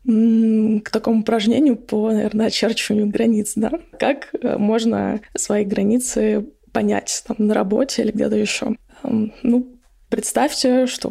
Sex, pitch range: female, 220-250 Hz